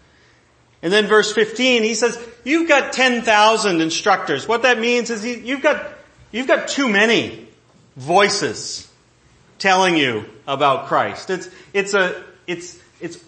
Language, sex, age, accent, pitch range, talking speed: English, male, 40-59, American, 160-245 Hz, 135 wpm